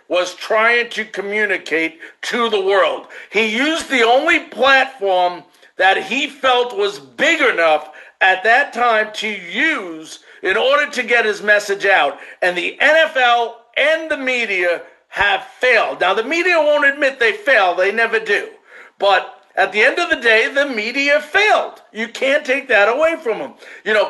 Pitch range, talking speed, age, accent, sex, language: 210-280 Hz, 165 wpm, 50-69, American, male, English